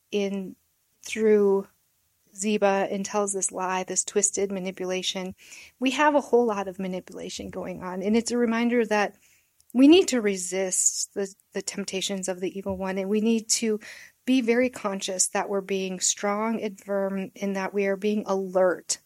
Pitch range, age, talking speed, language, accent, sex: 190-225 Hz, 30-49, 170 wpm, English, American, female